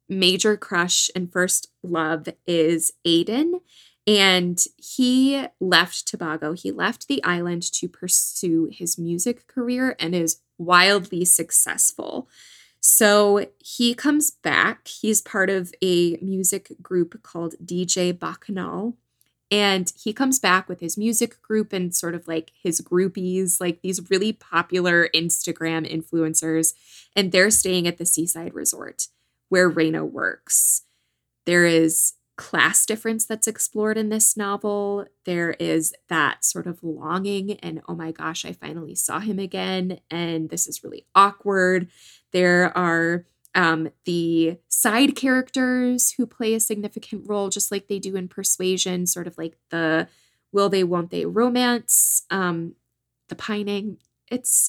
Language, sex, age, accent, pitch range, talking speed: English, female, 20-39, American, 170-215 Hz, 135 wpm